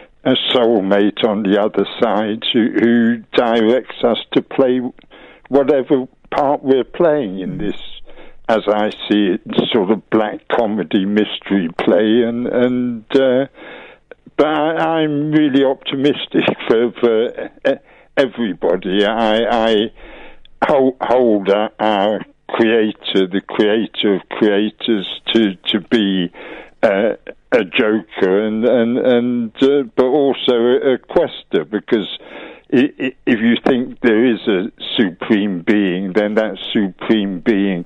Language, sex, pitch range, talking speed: English, male, 105-125 Hz, 125 wpm